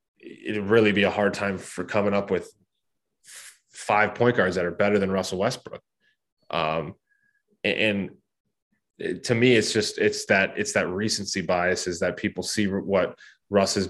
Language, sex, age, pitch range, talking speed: English, male, 20-39, 95-110 Hz, 175 wpm